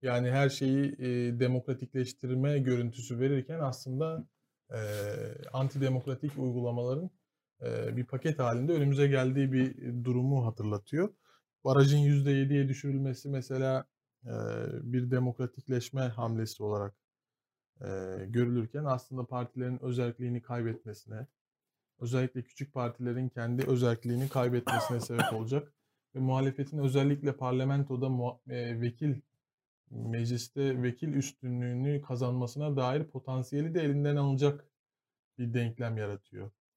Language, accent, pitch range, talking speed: Turkish, native, 125-140 Hz, 100 wpm